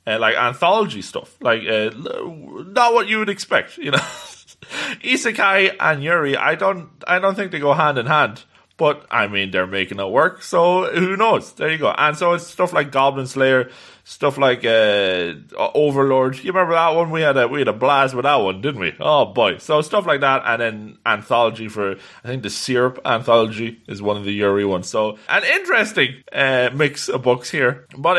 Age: 20-39